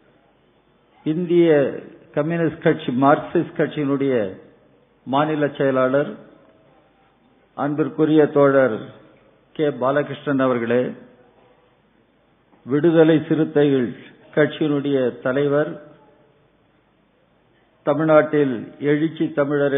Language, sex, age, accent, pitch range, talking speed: Tamil, male, 50-69, native, 135-155 Hz, 60 wpm